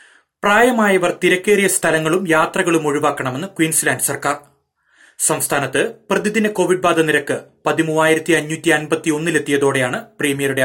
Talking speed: 80 wpm